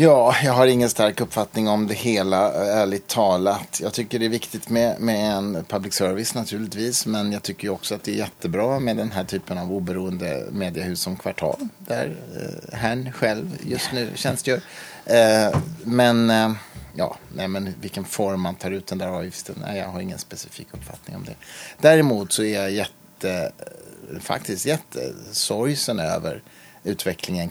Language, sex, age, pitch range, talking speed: English, male, 30-49, 90-120 Hz, 155 wpm